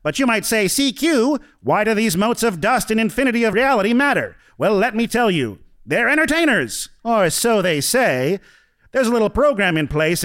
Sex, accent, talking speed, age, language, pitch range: male, American, 195 wpm, 40-59, English, 195-245 Hz